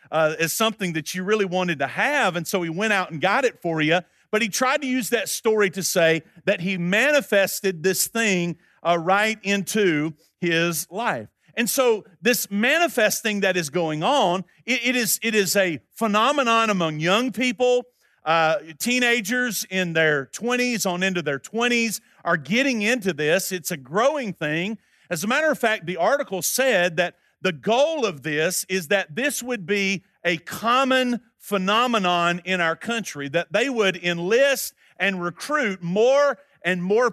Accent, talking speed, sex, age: American, 170 wpm, male, 40-59